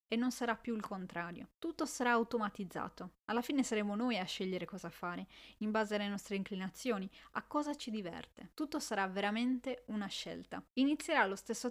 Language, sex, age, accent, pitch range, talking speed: Italian, female, 20-39, native, 200-245 Hz, 175 wpm